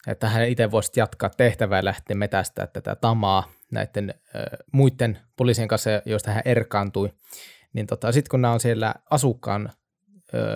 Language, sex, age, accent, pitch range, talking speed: Finnish, male, 20-39, native, 105-125 Hz, 155 wpm